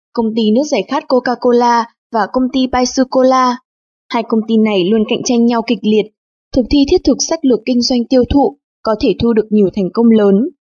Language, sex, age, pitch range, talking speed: English, female, 20-39, 215-260 Hz, 220 wpm